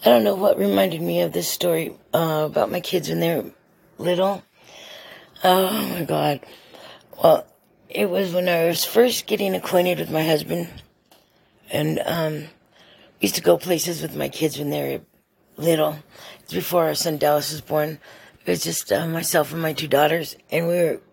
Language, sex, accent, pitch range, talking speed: English, female, American, 155-195 Hz, 185 wpm